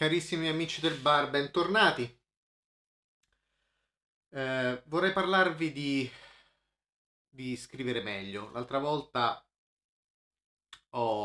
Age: 30-49